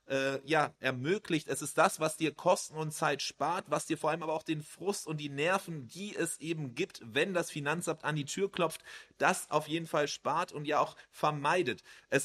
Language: German